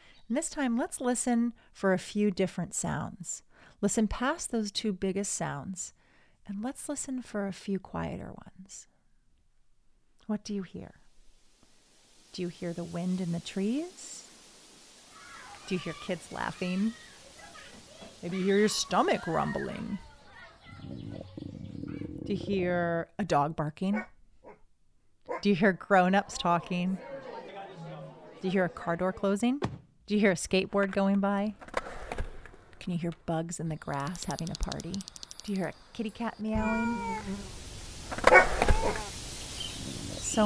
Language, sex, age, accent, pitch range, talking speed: English, female, 30-49, American, 175-215 Hz, 135 wpm